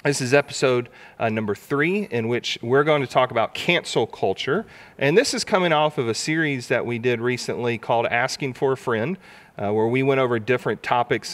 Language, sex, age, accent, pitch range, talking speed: English, male, 40-59, American, 115-145 Hz, 205 wpm